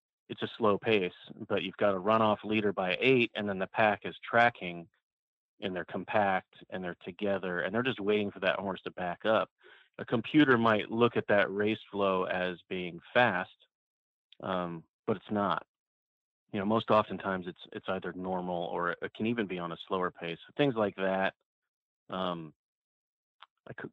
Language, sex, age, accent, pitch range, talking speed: English, male, 30-49, American, 90-105 Hz, 180 wpm